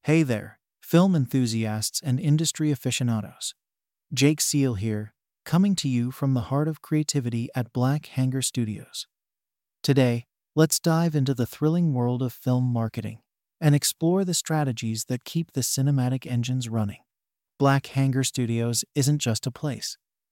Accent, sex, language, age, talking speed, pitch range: American, male, English, 40-59, 145 wpm, 120-150 Hz